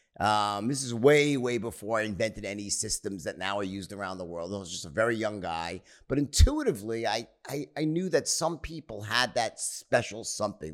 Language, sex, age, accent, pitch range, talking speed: English, male, 50-69, American, 100-125 Hz, 205 wpm